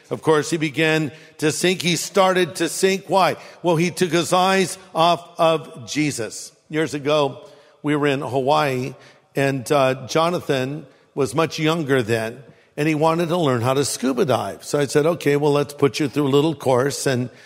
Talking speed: 185 wpm